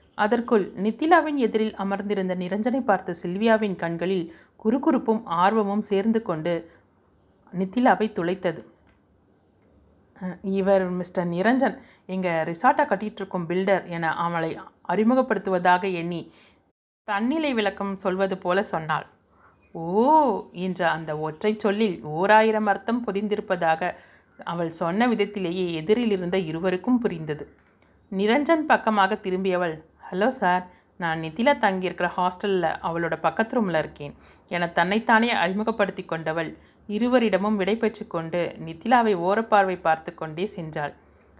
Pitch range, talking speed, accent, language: 170-220 Hz, 100 wpm, native, Tamil